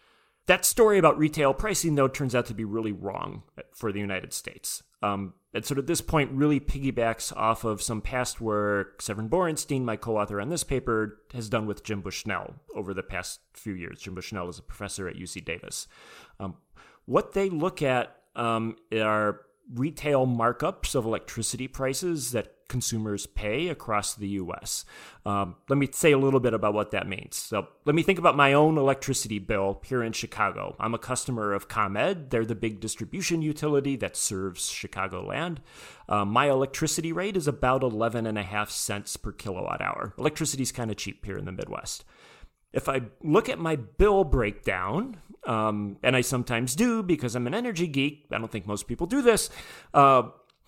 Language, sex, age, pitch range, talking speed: English, male, 30-49, 105-145 Hz, 180 wpm